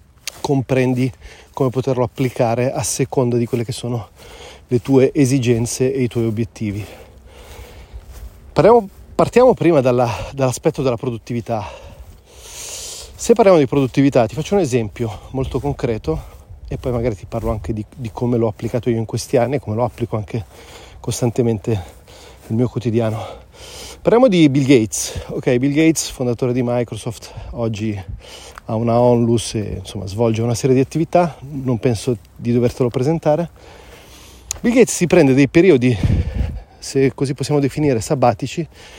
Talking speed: 145 wpm